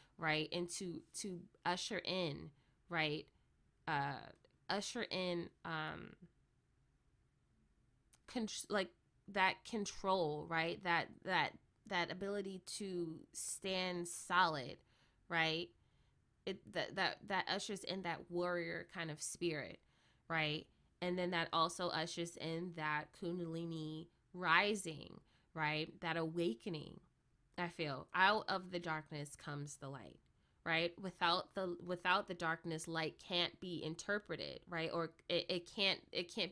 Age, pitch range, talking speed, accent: 20-39, 160-195 Hz, 120 wpm, American